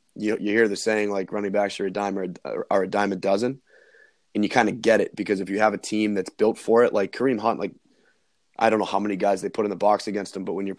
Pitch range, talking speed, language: 100-110 Hz, 300 wpm, English